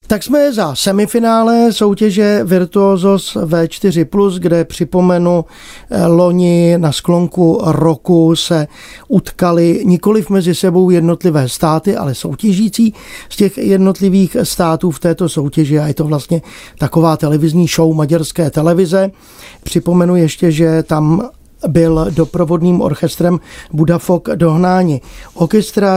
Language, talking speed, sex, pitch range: Czech, 110 wpm, male, 165-195 Hz